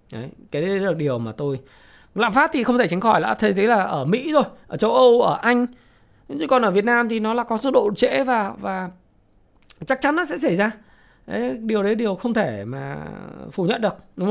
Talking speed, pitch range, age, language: 235 wpm, 175-245 Hz, 20-39, Vietnamese